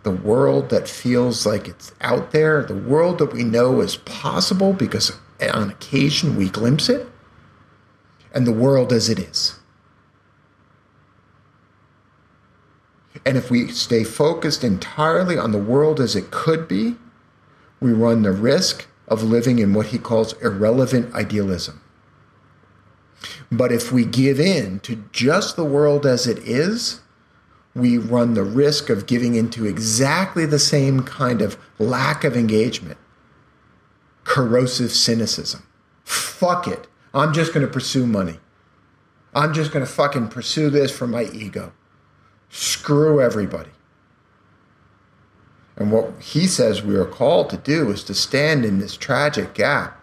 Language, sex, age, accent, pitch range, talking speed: English, male, 50-69, American, 110-145 Hz, 140 wpm